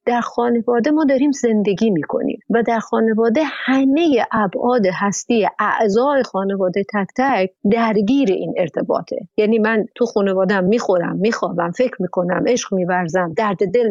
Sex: female